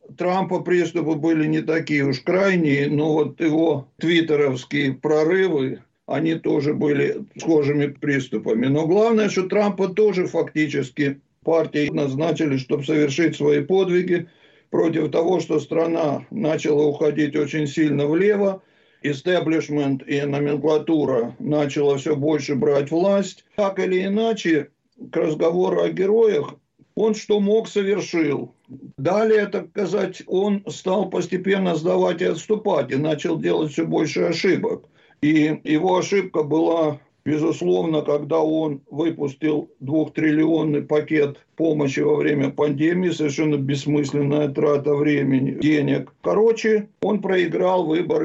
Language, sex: Russian, male